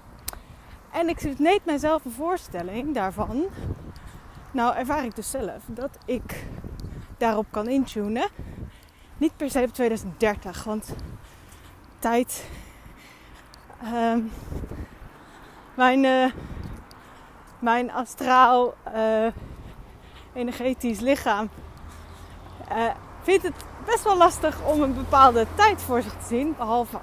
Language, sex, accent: Dutch, female, Dutch